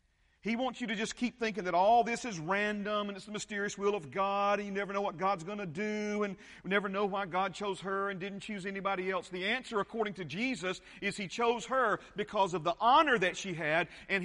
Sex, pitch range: male, 135-210 Hz